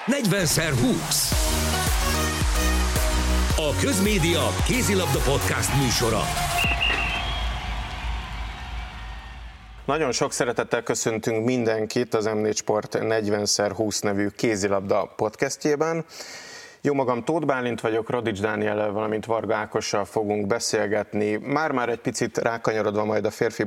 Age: 50-69